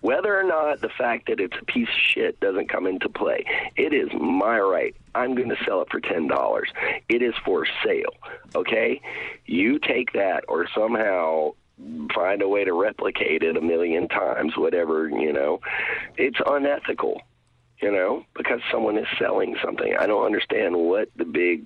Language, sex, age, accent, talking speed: English, male, 40-59, American, 170 wpm